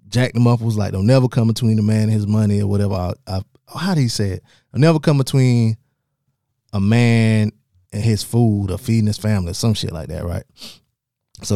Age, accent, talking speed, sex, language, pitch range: 20-39, American, 225 wpm, male, English, 100-120 Hz